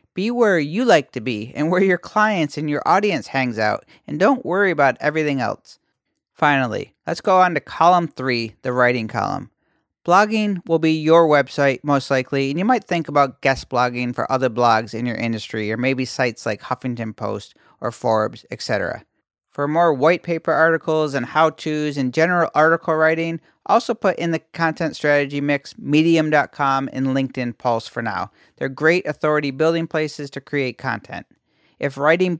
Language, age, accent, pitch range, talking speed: English, 40-59, American, 135-165 Hz, 175 wpm